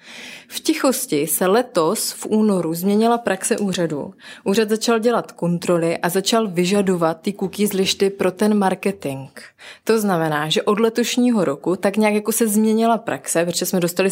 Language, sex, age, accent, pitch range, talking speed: Czech, female, 20-39, native, 180-235 Hz, 155 wpm